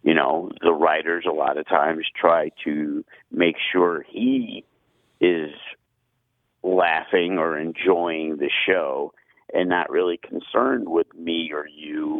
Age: 50-69